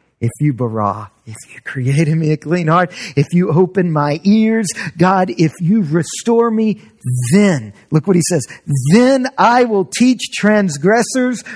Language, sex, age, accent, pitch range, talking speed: English, male, 40-59, American, 185-275 Hz, 155 wpm